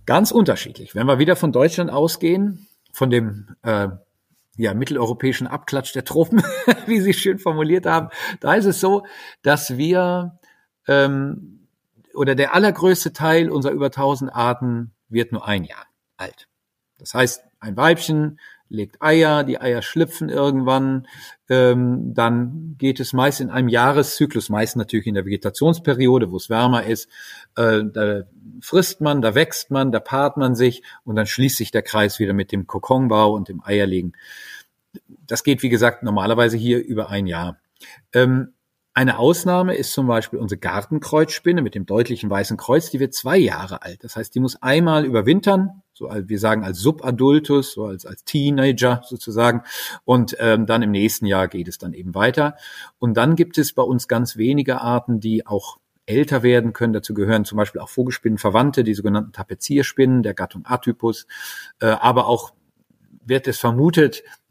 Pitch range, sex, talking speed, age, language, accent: 110-145 Hz, male, 165 wpm, 50-69, German, German